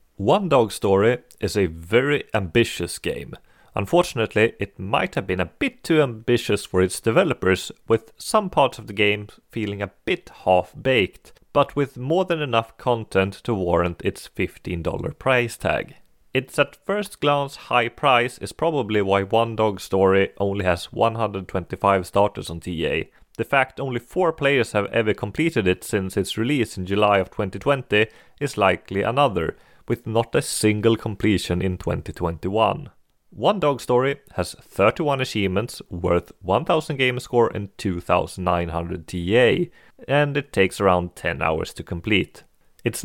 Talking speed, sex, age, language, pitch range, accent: 150 wpm, male, 30-49, English, 95-125 Hz, Swedish